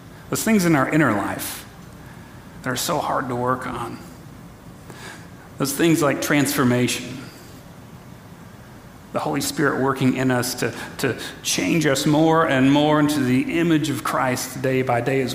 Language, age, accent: English, 40-59, American